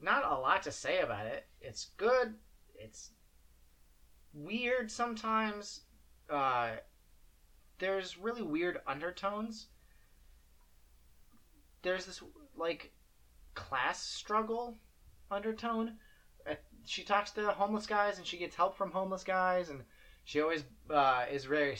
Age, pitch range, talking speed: 30-49, 105-170 Hz, 115 wpm